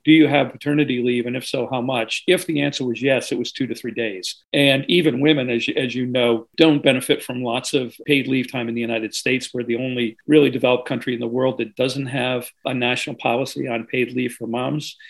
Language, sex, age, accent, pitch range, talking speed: English, male, 50-69, American, 115-140 Hz, 240 wpm